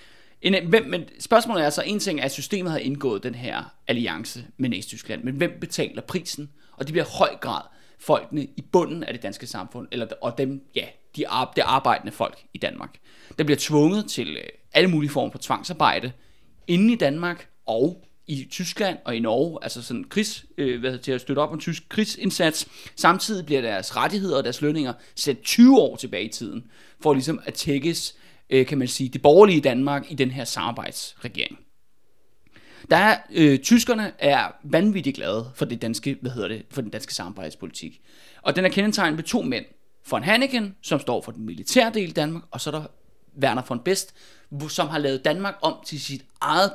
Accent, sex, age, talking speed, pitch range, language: native, male, 30-49, 195 wpm, 135-190 Hz, Danish